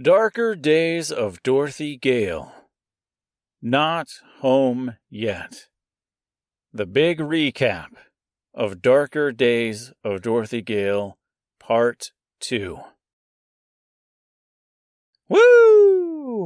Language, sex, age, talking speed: English, male, 40-59, 75 wpm